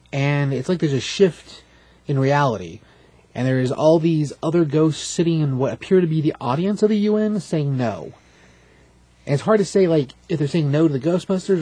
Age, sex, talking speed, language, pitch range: 30-49, male, 205 wpm, English, 120-165 Hz